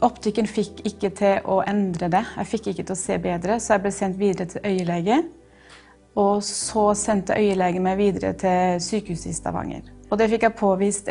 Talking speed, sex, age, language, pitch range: 185 wpm, female, 30-49, English, 185-215 Hz